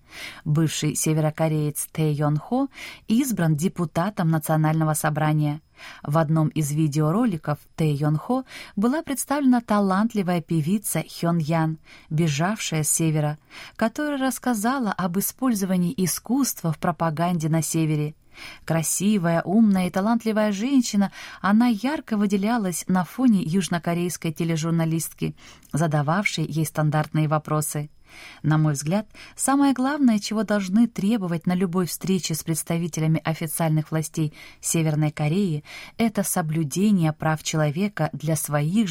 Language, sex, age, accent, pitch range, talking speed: Russian, female, 20-39, native, 155-205 Hz, 115 wpm